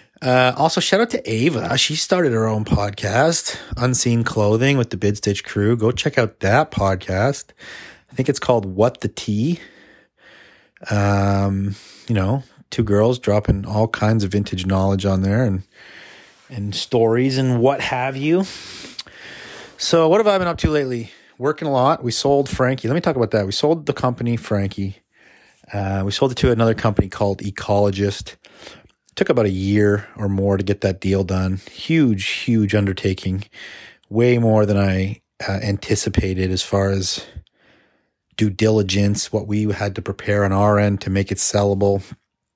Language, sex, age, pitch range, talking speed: English, male, 30-49, 100-125 Hz, 170 wpm